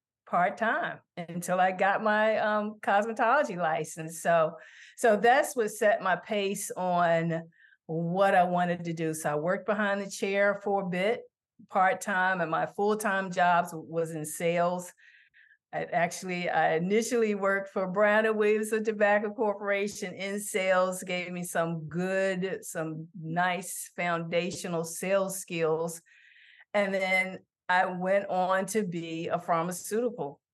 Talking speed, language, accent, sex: 135 wpm, English, American, female